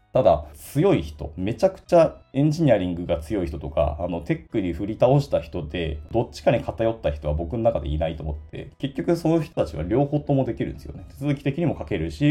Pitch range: 75-130 Hz